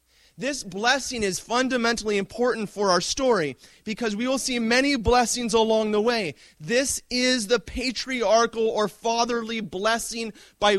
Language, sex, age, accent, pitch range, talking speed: English, male, 30-49, American, 170-235 Hz, 140 wpm